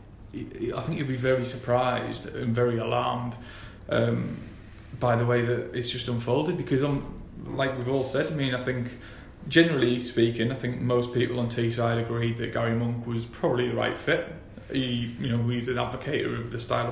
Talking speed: 190 wpm